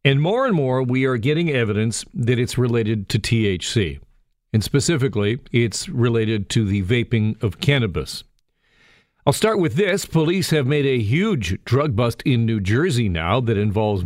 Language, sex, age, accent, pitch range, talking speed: English, male, 50-69, American, 110-140 Hz, 165 wpm